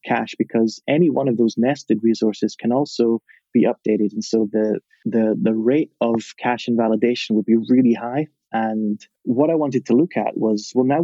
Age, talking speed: 20-39, 190 wpm